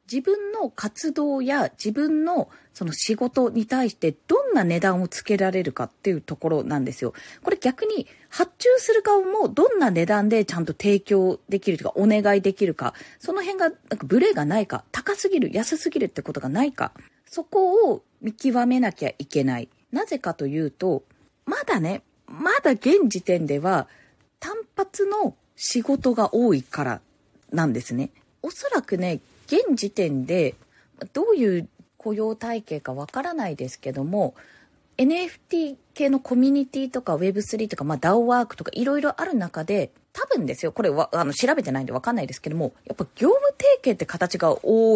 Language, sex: Japanese, female